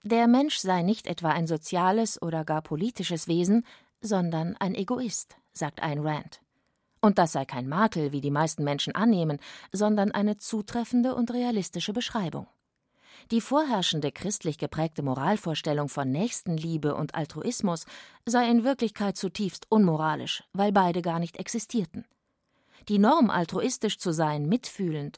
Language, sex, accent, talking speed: German, female, German, 140 wpm